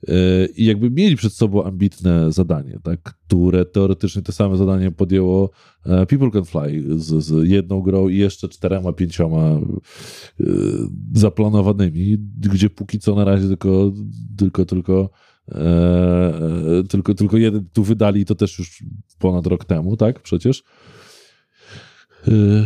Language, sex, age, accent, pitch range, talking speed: Polish, male, 20-39, native, 90-105 Hz, 130 wpm